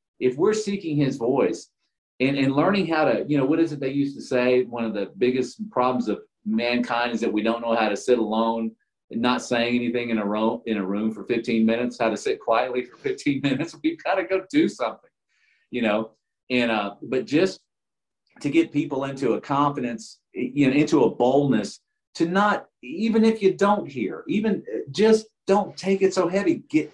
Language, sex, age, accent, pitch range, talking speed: English, male, 40-59, American, 115-175 Hz, 205 wpm